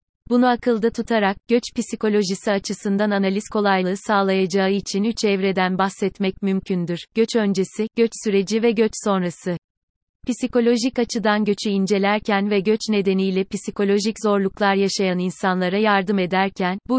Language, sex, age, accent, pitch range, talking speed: Turkish, female, 30-49, native, 190-220 Hz, 125 wpm